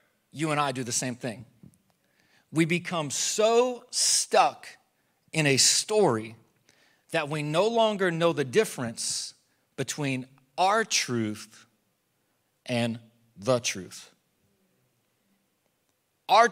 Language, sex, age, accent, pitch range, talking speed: English, male, 40-59, American, 130-190 Hz, 100 wpm